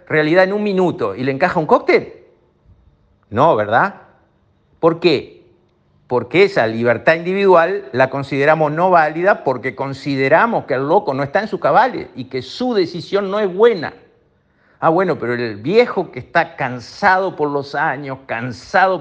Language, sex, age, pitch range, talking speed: Spanish, male, 50-69, 135-180 Hz, 160 wpm